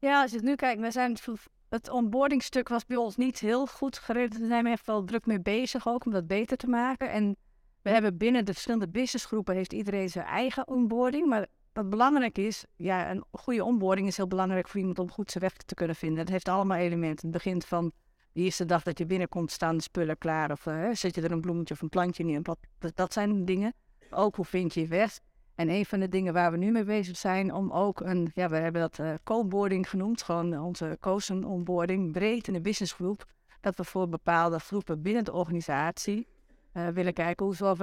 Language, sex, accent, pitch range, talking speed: Dutch, female, Dutch, 175-215 Hz, 220 wpm